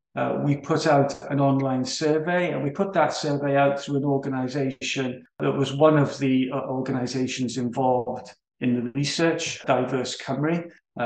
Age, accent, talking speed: 40-59, British, 165 wpm